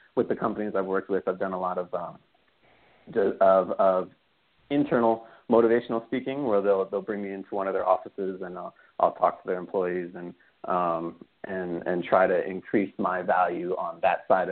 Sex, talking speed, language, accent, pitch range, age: male, 190 wpm, English, American, 95-115 Hz, 40-59